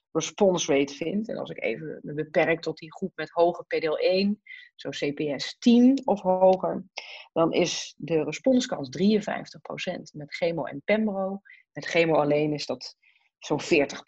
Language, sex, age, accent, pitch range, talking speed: Dutch, female, 30-49, Dutch, 165-210 Hz, 155 wpm